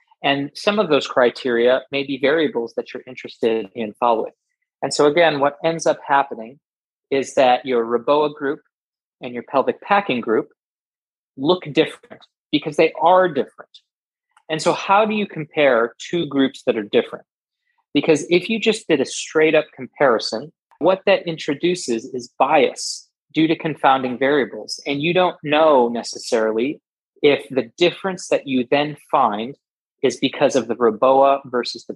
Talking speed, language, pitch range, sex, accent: 160 wpm, English, 125-185 Hz, male, American